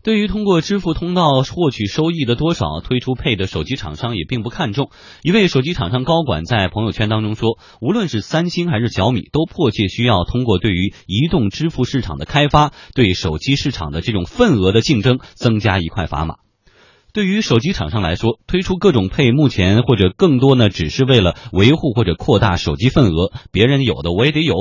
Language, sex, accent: Chinese, male, native